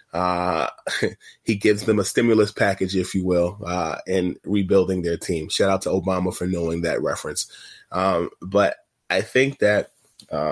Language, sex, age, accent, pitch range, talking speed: English, male, 20-39, American, 90-110 Hz, 165 wpm